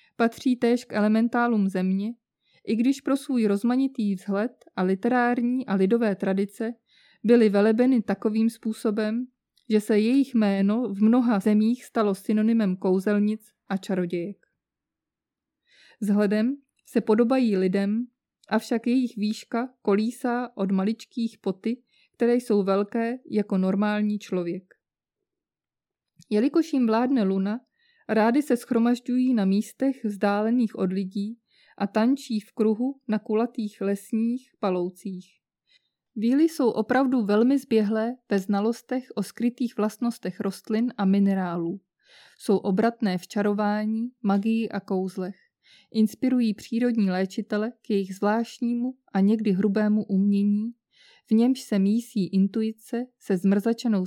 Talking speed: 120 wpm